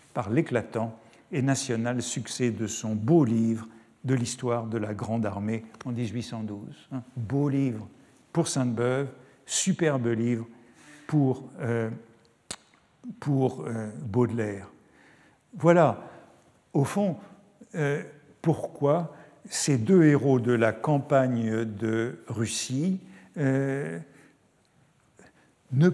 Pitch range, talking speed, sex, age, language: 115-155 Hz, 100 wpm, male, 60-79, French